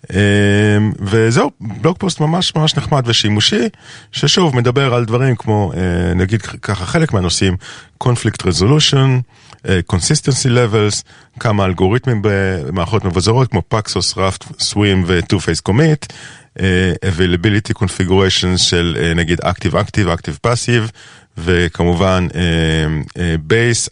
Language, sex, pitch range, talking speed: Hebrew, male, 90-125 Hz, 110 wpm